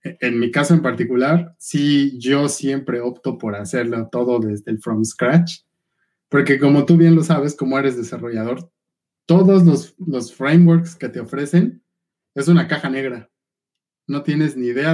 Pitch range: 120-160 Hz